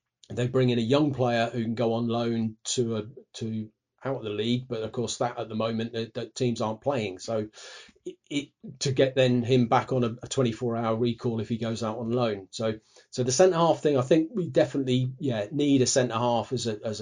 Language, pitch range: English, 110-130 Hz